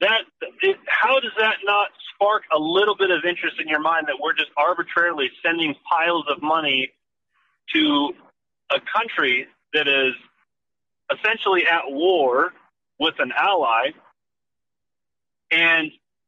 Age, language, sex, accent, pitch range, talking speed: 30-49, English, male, American, 155-250 Hz, 125 wpm